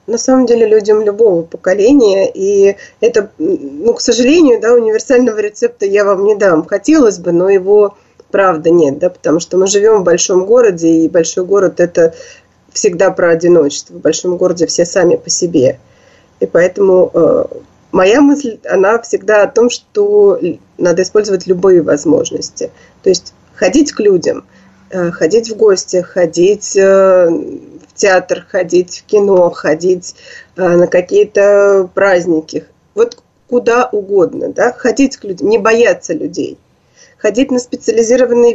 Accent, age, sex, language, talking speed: native, 30-49, female, Russian, 145 wpm